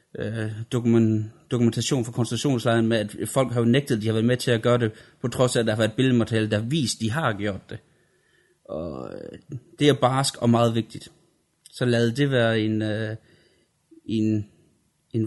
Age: 30-49